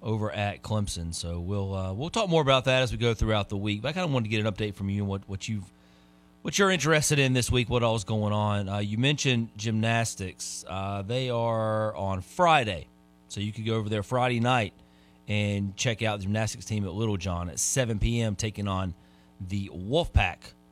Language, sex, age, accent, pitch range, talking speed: English, male, 30-49, American, 95-135 Hz, 220 wpm